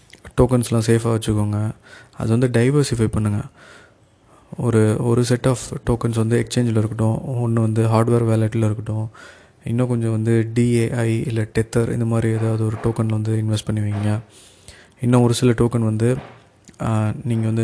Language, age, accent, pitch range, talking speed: Tamil, 20-39, native, 110-120 Hz, 145 wpm